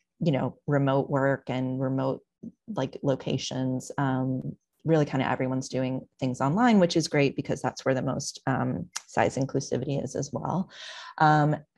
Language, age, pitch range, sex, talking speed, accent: English, 30-49, 130-155 Hz, female, 160 wpm, American